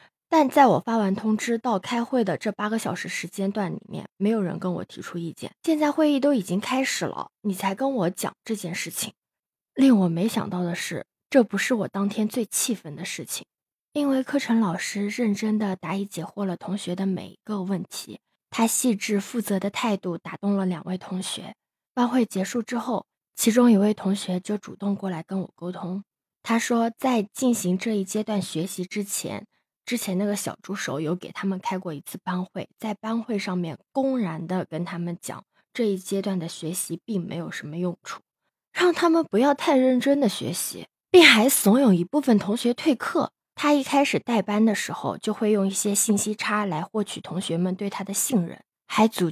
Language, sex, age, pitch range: Chinese, female, 20-39, 185-235 Hz